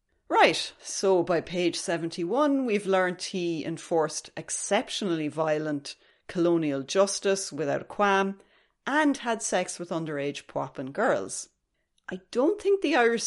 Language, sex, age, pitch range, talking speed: English, female, 30-49, 160-215 Hz, 125 wpm